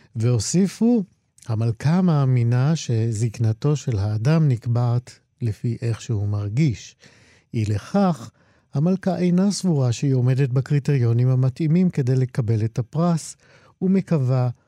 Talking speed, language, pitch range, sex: 100 wpm, Hebrew, 115-150 Hz, male